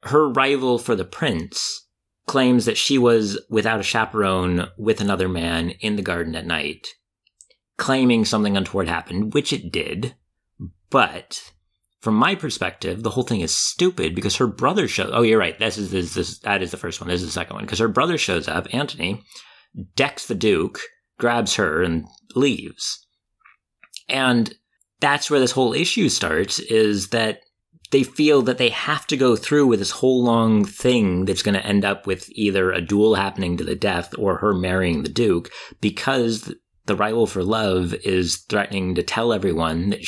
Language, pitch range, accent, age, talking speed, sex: English, 95-140 Hz, American, 30-49, 185 wpm, male